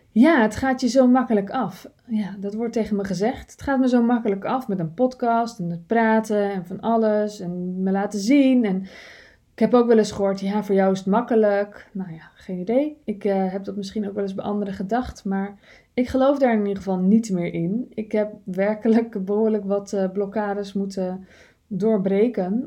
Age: 20-39